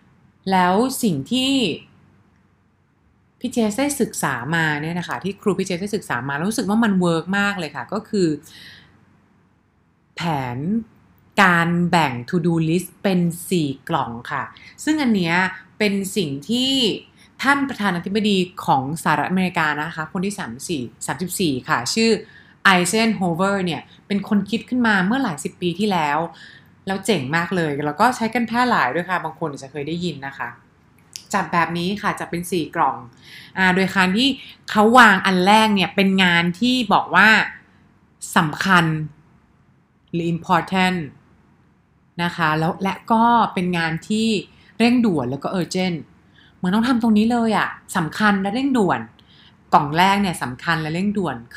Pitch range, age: 165-210 Hz, 20-39